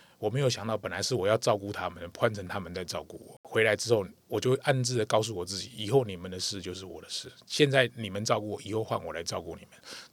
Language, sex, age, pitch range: Chinese, male, 20-39, 100-130 Hz